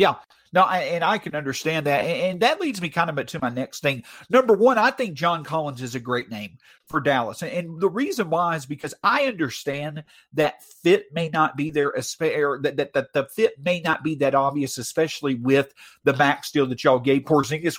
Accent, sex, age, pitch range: American, male, 50-69, 145-215 Hz